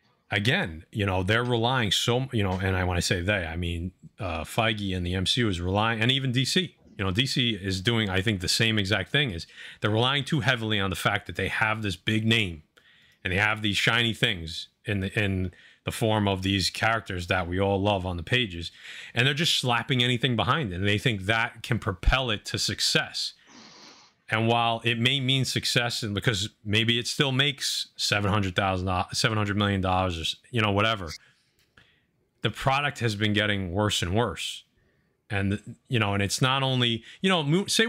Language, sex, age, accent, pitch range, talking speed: English, male, 30-49, American, 95-120 Hz, 205 wpm